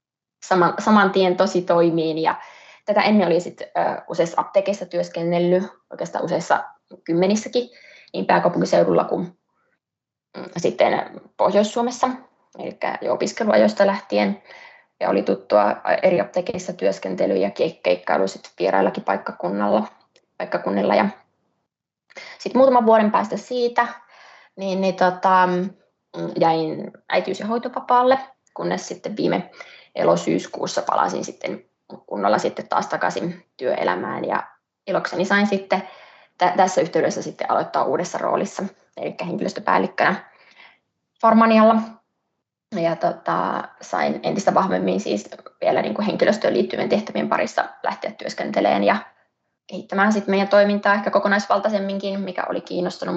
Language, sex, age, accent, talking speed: Finnish, female, 20-39, native, 110 wpm